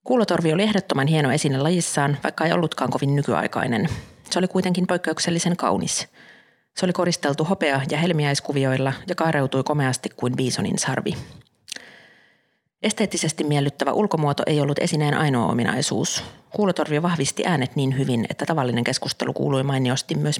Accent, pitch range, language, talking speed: native, 135-170 Hz, Finnish, 140 wpm